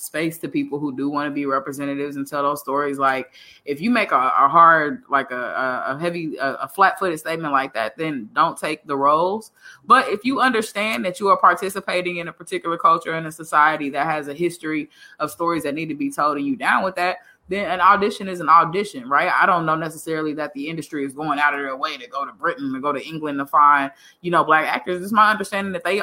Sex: female